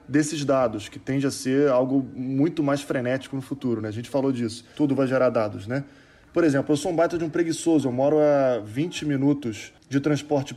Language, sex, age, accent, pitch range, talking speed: Portuguese, male, 20-39, Brazilian, 130-150 Hz, 215 wpm